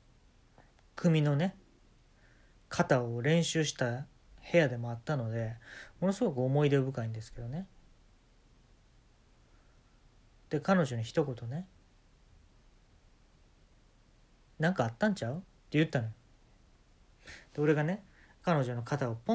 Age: 40-59